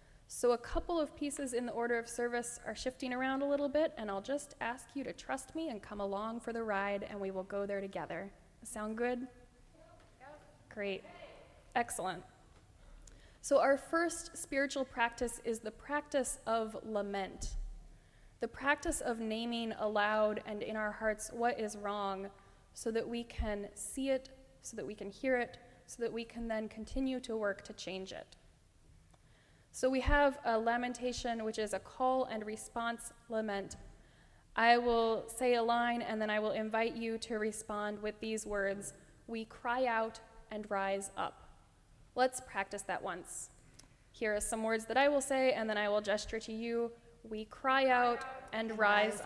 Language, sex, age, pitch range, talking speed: English, female, 10-29, 210-250 Hz, 175 wpm